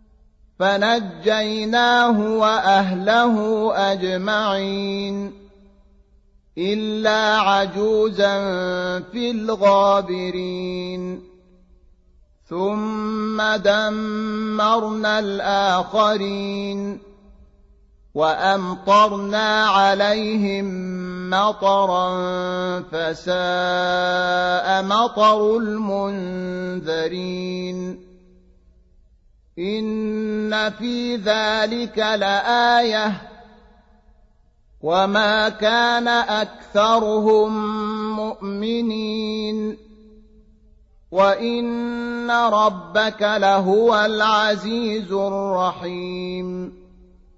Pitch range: 180-215 Hz